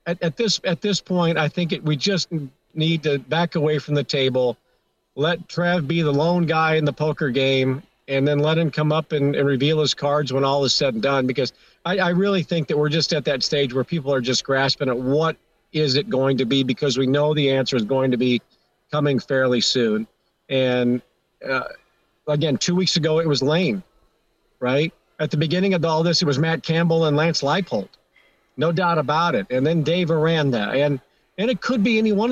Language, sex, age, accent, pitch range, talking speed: English, male, 50-69, American, 140-170 Hz, 220 wpm